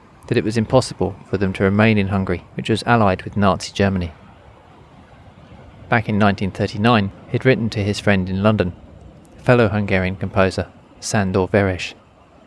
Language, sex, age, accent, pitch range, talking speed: English, male, 30-49, British, 95-120 Hz, 150 wpm